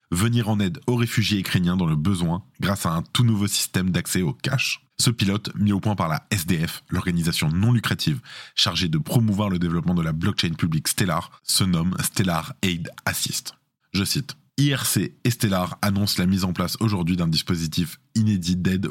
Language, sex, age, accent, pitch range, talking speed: French, male, 20-39, French, 90-110 Hz, 185 wpm